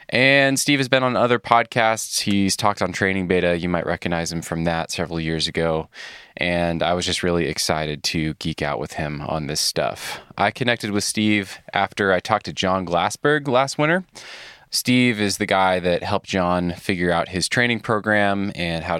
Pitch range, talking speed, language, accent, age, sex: 85-110 Hz, 195 wpm, English, American, 20-39, male